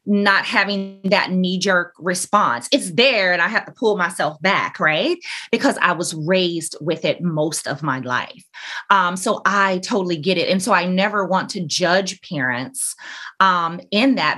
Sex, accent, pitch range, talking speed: female, American, 175-210 Hz, 175 wpm